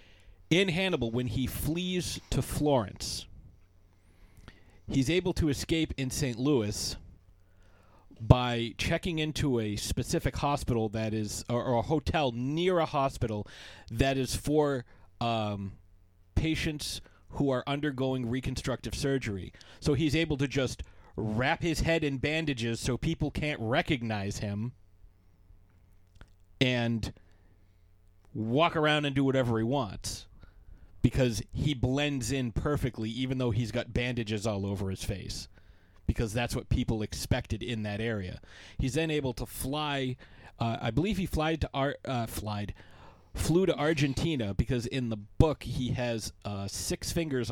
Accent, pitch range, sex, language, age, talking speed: American, 95-130 Hz, male, English, 30-49, 140 wpm